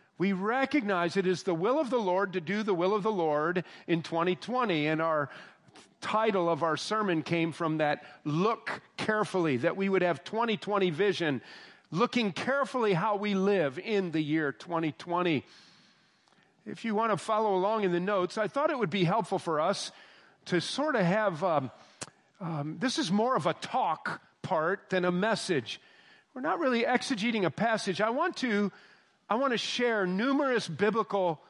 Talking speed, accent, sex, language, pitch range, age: 175 wpm, American, male, English, 180-235 Hz, 50-69